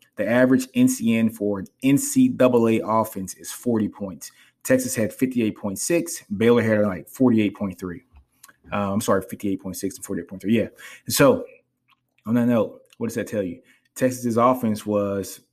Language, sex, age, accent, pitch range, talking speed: English, male, 20-39, American, 95-115 Hz, 135 wpm